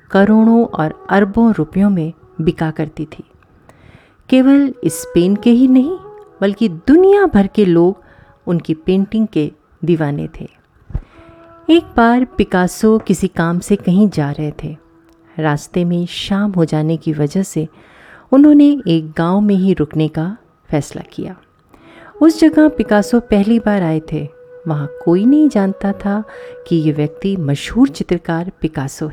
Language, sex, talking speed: Hindi, female, 140 wpm